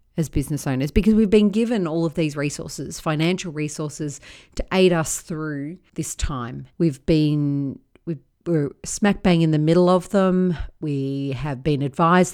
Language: English